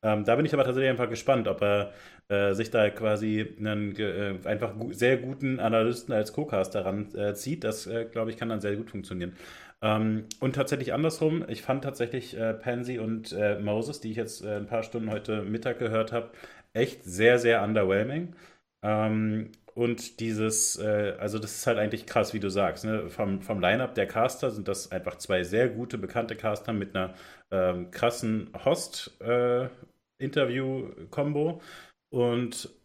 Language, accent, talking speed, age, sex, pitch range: German, German, 170 wpm, 30-49, male, 105-125 Hz